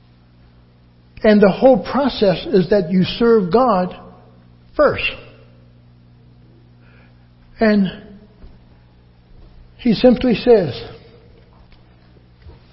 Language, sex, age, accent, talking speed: English, male, 60-79, American, 65 wpm